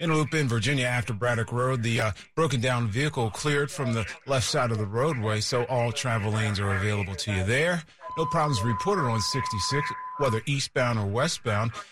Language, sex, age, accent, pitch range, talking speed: English, male, 40-59, American, 105-140 Hz, 190 wpm